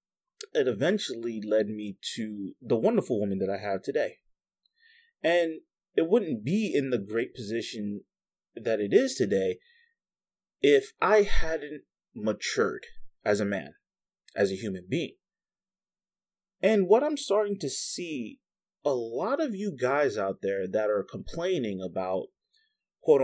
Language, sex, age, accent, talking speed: English, male, 30-49, American, 135 wpm